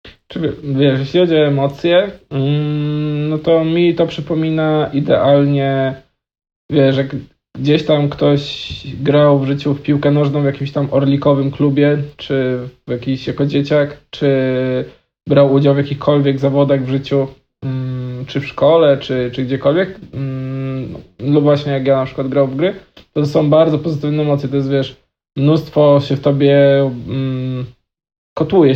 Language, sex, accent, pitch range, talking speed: Polish, male, native, 135-150 Hz, 155 wpm